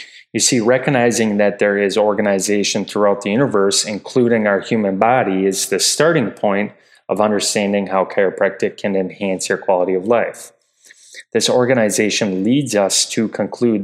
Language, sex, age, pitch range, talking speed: English, male, 20-39, 95-120 Hz, 145 wpm